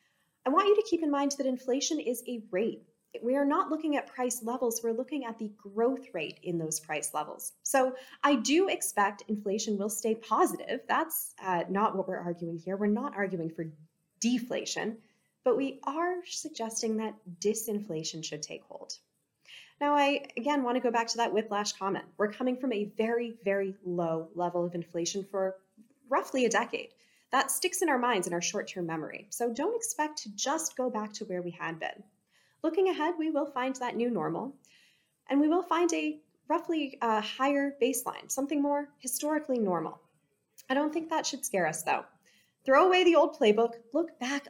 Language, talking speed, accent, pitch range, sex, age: English, 190 wpm, American, 190-280 Hz, female, 20-39